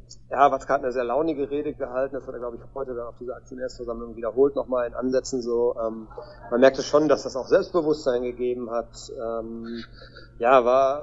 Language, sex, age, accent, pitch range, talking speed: German, male, 30-49, German, 120-135 Hz, 190 wpm